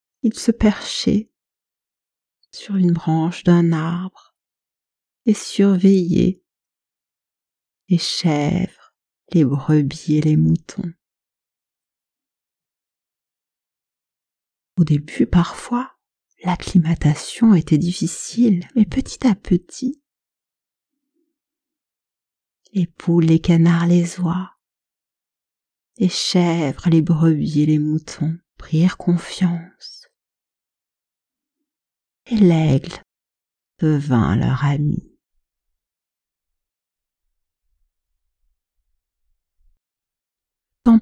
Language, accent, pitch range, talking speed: French, French, 145-205 Hz, 70 wpm